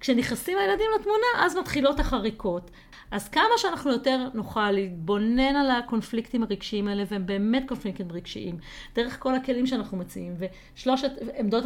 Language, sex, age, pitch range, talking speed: Hebrew, female, 40-59, 195-260 Hz, 140 wpm